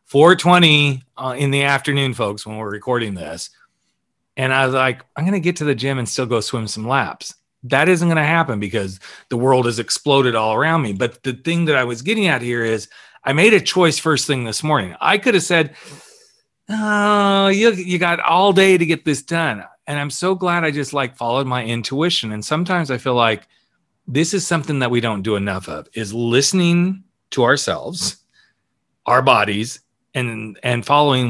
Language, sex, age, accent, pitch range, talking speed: English, male, 40-59, American, 110-155 Hz, 200 wpm